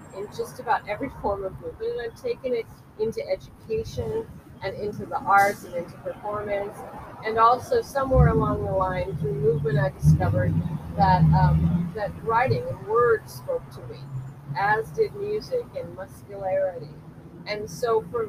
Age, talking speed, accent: 40-59, 155 wpm, American